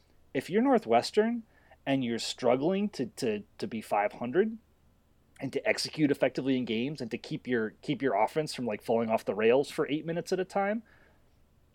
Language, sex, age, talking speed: English, male, 30-49, 185 wpm